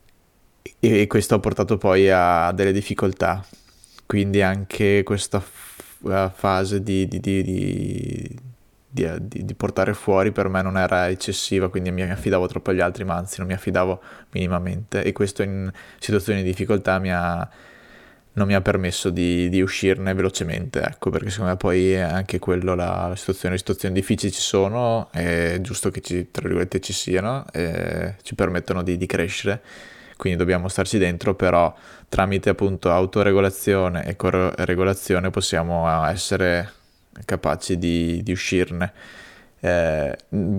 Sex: male